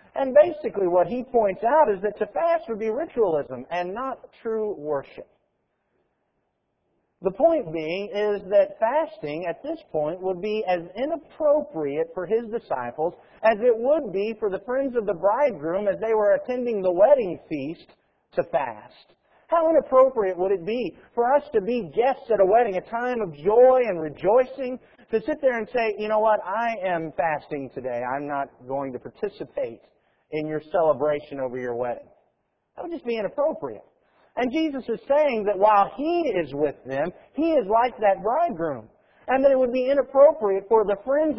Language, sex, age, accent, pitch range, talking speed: English, male, 50-69, American, 185-275 Hz, 180 wpm